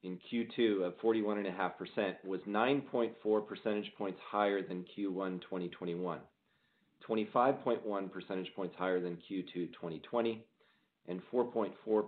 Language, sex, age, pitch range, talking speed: English, male, 40-59, 90-115 Hz, 105 wpm